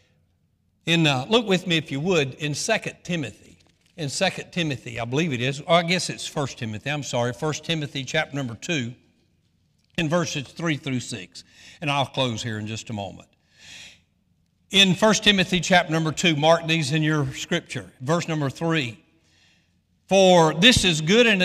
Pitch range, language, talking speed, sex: 125-175 Hz, English, 175 wpm, male